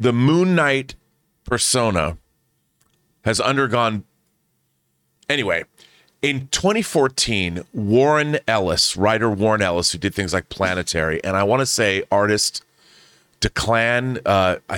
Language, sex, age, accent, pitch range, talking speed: English, male, 40-59, American, 95-130 Hz, 105 wpm